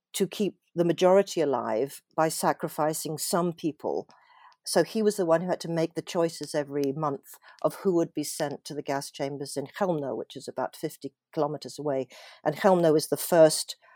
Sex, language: female, English